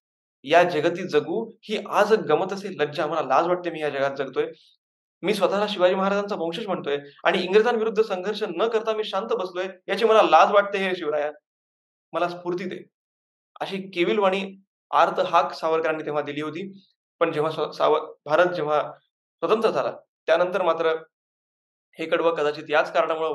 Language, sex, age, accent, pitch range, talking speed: Marathi, male, 20-39, native, 145-185 Hz, 150 wpm